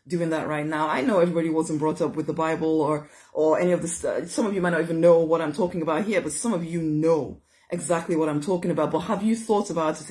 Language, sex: English, female